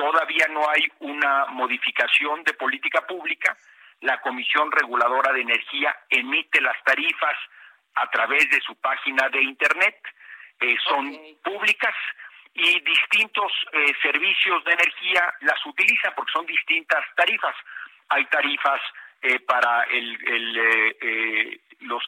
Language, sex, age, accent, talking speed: Spanish, male, 50-69, Mexican, 120 wpm